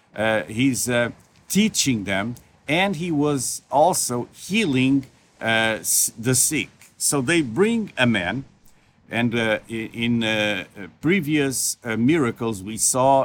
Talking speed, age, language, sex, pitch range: 120 wpm, 50-69, English, male, 110-135 Hz